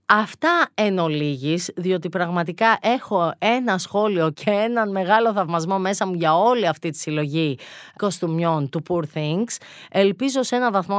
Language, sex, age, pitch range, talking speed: Greek, female, 30-49, 170-235 Hz, 150 wpm